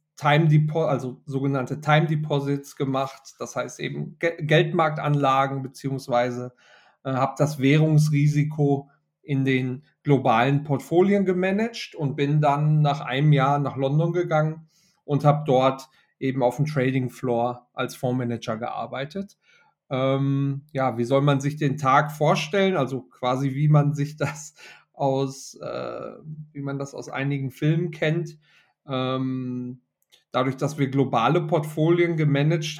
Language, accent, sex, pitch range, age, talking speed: German, German, male, 135-150 Hz, 40-59, 130 wpm